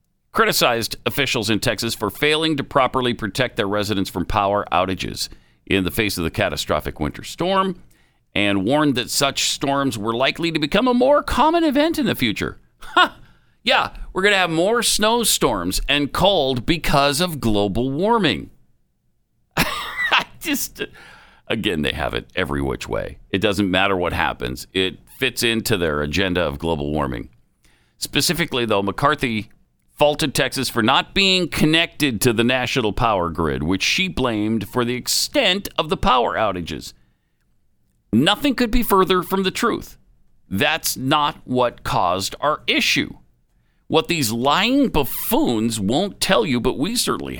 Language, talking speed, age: English, 155 wpm, 50-69